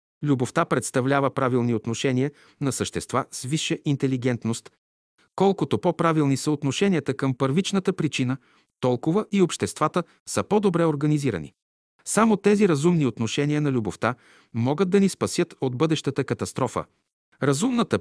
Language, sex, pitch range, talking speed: Bulgarian, male, 125-170 Hz, 120 wpm